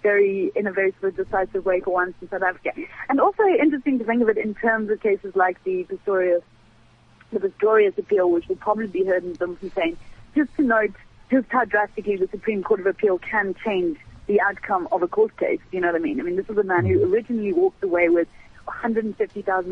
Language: English